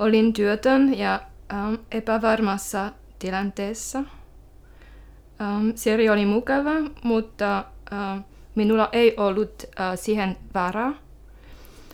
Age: 20-39